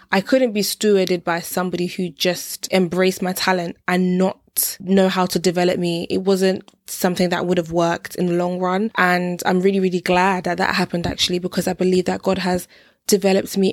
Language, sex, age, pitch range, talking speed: English, female, 20-39, 180-205 Hz, 200 wpm